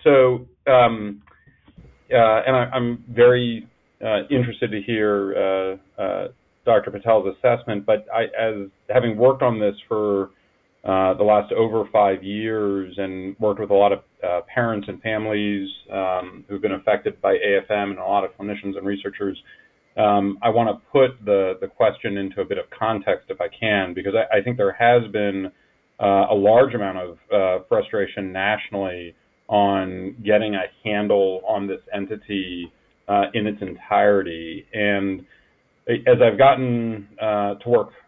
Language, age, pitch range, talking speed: English, 40-59, 100-120 Hz, 160 wpm